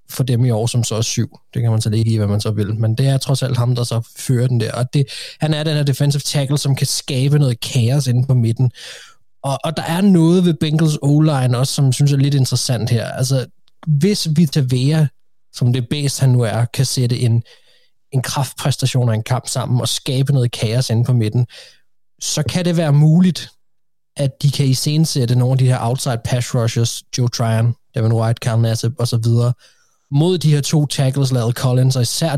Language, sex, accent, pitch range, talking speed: Danish, male, native, 120-145 Hz, 225 wpm